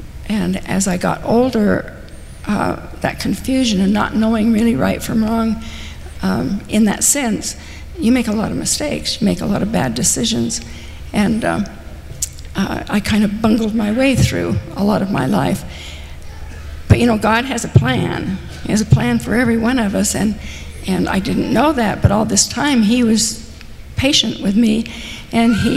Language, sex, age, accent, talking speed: English, female, 60-79, American, 185 wpm